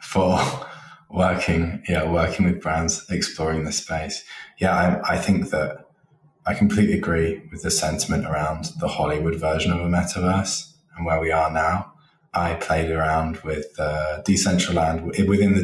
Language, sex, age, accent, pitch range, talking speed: English, male, 20-39, British, 80-100 Hz, 155 wpm